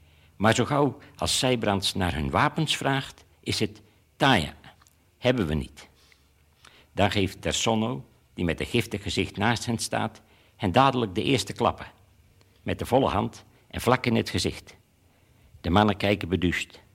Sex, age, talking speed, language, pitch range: male, 60-79, 155 wpm, Dutch, 95-120 Hz